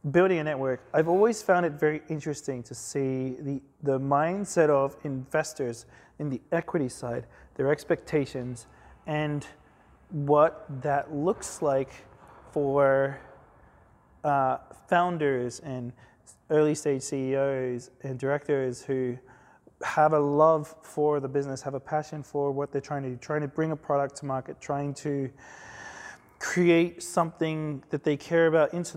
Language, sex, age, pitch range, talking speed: English, male, 20-39, 135-155 Hz, 140 wpm